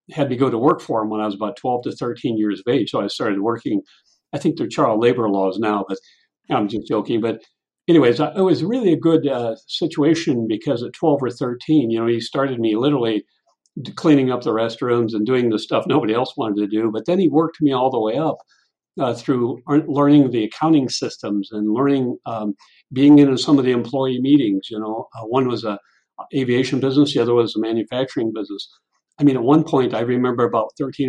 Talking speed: 220 wpm